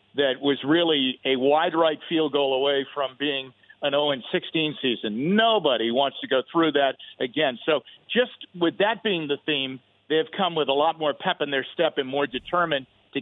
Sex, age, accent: male, 50-69, American